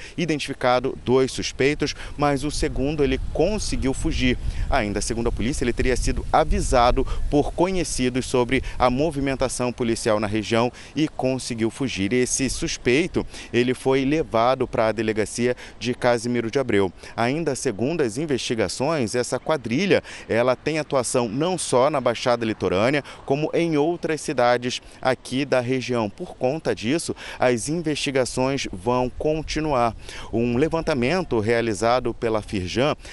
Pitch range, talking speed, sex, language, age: 115-140 Hz, 130 wpm, male, Portuguese, 30-49